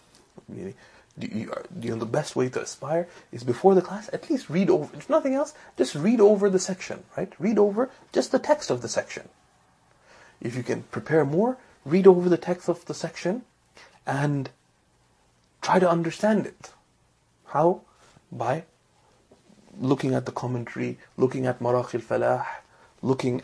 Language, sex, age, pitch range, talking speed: English, male, 30-49, 125-185 Hz, 155 wpm